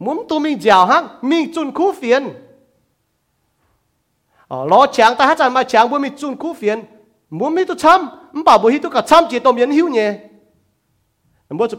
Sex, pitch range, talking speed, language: male, 190-260 Hz, 160 wpm, English